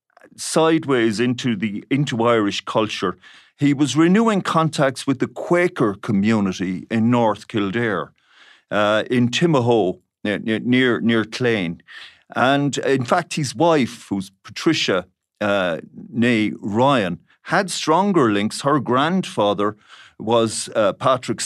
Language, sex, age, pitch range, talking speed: English, male, 50-69, 105-130 Hz, 115 wpm